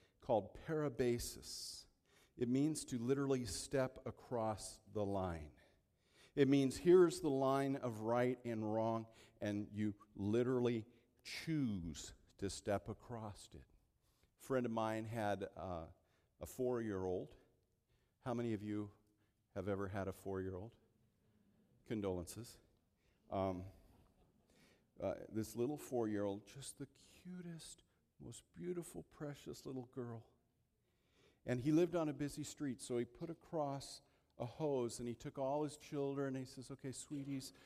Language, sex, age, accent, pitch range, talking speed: English, male, 50-69, American, 110-145 Hz, 130 wpm